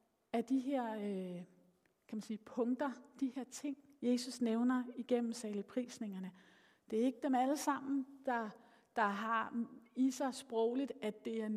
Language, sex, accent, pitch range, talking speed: Danish, female, native, 200-255 Hz, 155 wpm